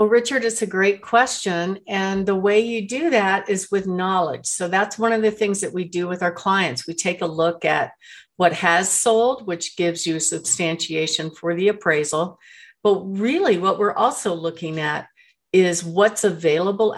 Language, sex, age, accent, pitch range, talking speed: English, female, 50-69, American, 175-230 Hz, 185 wpm